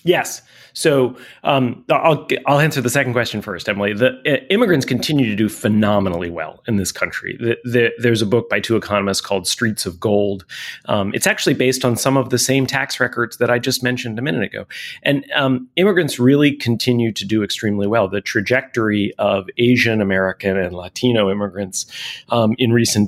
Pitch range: 100-125 Hz